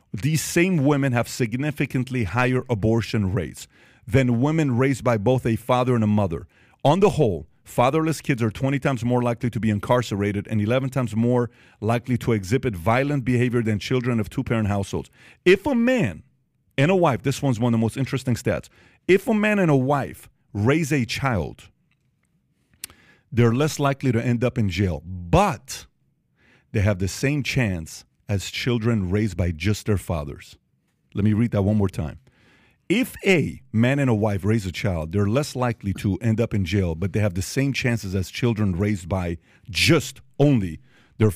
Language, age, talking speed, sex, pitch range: English, 40-59, 185 wpm, male, 105-135 Hz